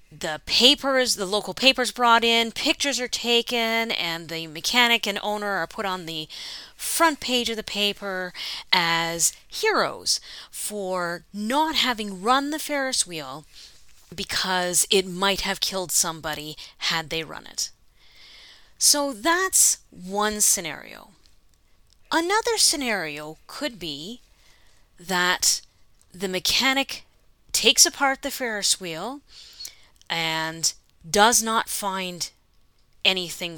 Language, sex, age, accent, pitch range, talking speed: English, female, 30-49, American, 175-235 Hz, 115 wpm